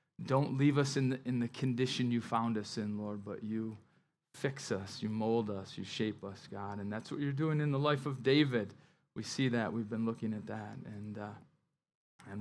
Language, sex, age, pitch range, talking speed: English, male, 30-49, 120-165 Hz, 220 wpm